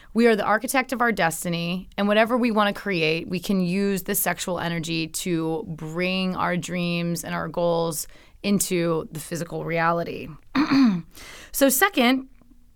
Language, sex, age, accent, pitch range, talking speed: English, female, 30-49, American, 175-220 Hz, 150 wpm